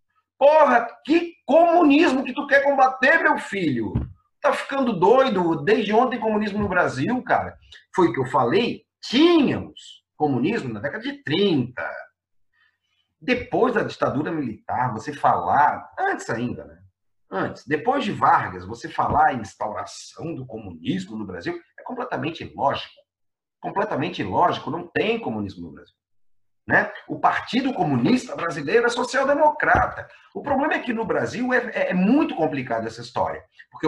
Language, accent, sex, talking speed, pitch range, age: Portuguese, Brazilian, male, 145 wpm, 195-295 Hz, 40-59